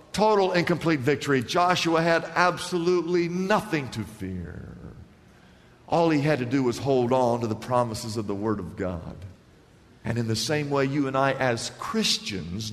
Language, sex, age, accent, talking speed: English, male, 50-69, American, 170 wpm